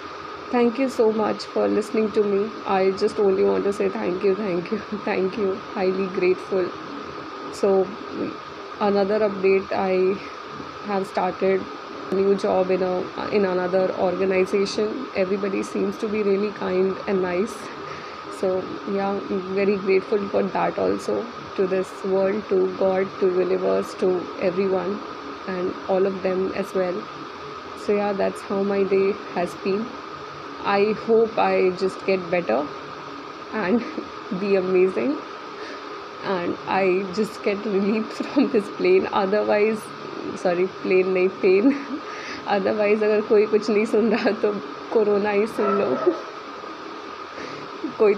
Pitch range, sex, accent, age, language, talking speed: 190-270 Hz, female, native, 20-39, Hindi, 140 wpm